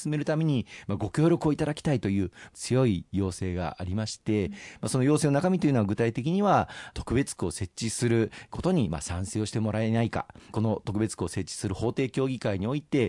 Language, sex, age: Japanese, male, 40-59